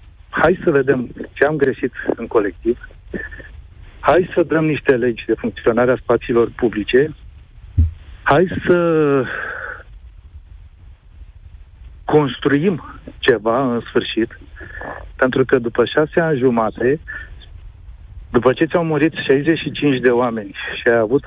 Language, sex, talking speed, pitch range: Romanian, male, 115 wpm, 100-150 Hz